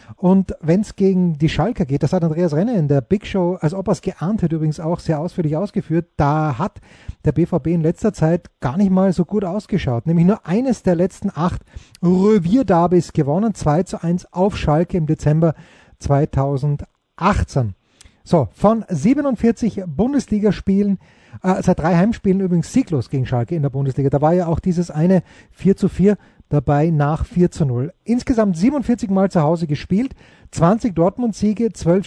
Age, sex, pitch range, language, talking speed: 30-49, male, 155-200 Hz, German, 175 wpm